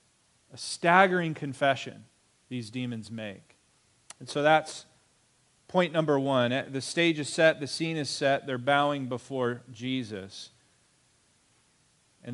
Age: 40-59